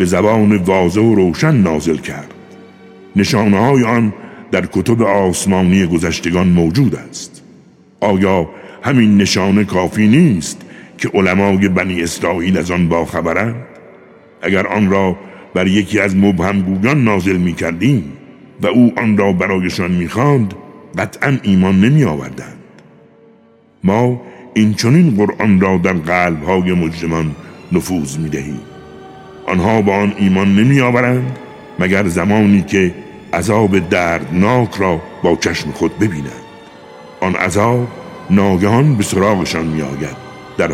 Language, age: Persian, 60-79